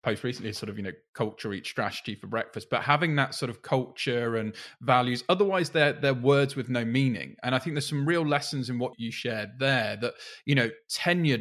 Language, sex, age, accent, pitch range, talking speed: English, male, 20-39, British, 125-150 Hz, 220 wpm